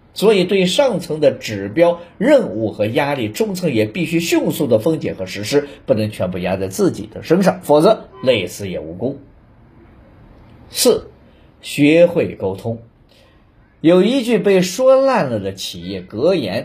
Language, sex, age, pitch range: Chinese, male, 50-69, 110-180 Hz